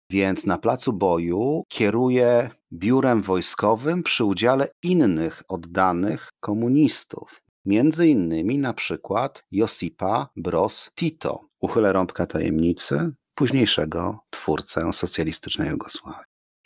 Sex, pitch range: male, 100-125 Hz